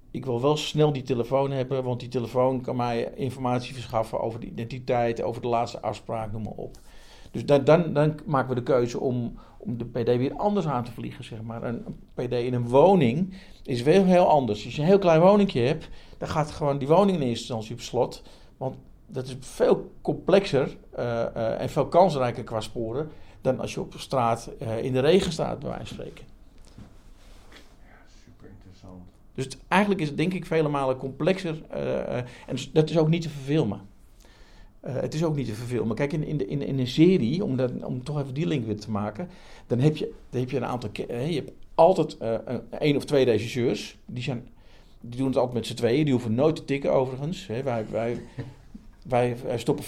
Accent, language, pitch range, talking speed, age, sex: Dutch, Dutch, 115-150 Hz, 205 wpm, 50-69, male